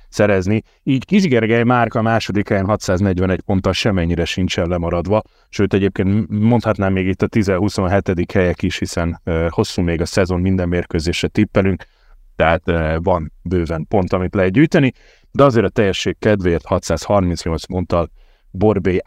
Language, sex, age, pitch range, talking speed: Hungarian, male, 30-49, 90-115 Hz, 140 wpm